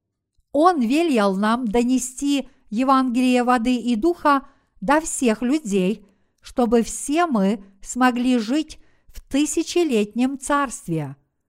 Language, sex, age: Russian, female, 50-69